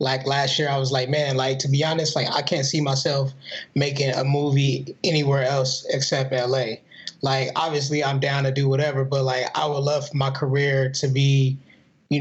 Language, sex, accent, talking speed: English, male, American, 195 wpm